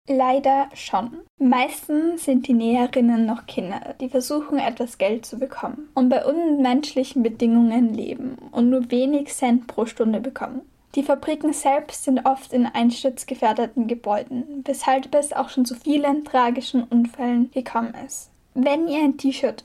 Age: 10-29